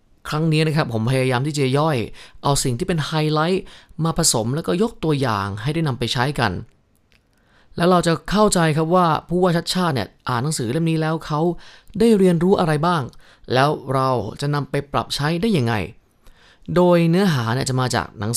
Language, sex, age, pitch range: Thai, male, 20-39, 120-175 Hz